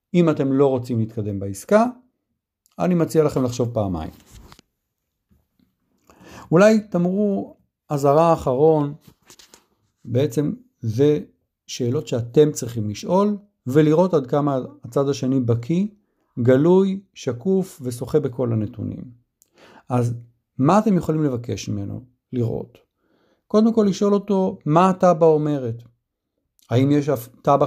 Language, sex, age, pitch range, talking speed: Hebrew, male, 50-69, 125-175 Hz, 110 wpm